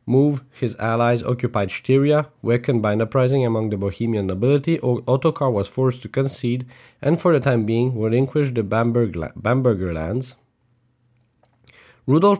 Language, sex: English, male